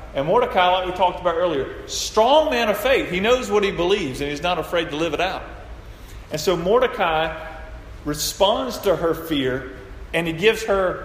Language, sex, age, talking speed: English, male, 40-59, 190 wpm